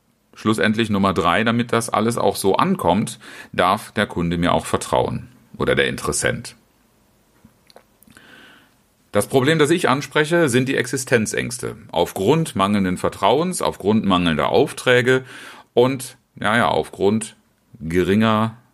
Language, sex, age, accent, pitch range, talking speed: German, male, 40-59, German, 85-120 Hz, 120 wpm